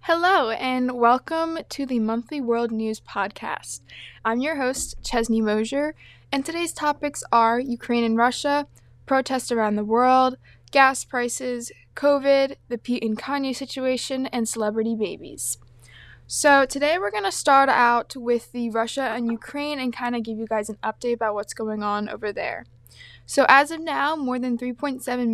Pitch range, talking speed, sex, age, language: 220-255 Hz, 165 wpm, female, 20-39, English